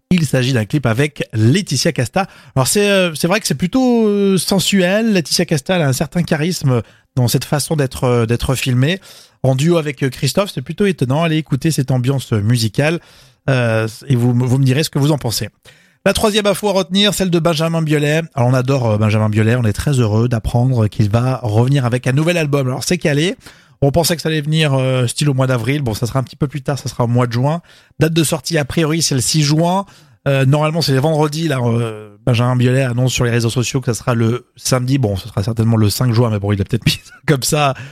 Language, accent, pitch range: French, French, 120-160 Hz